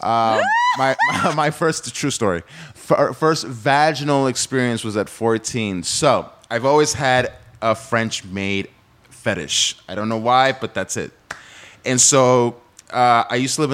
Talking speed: 150 wpm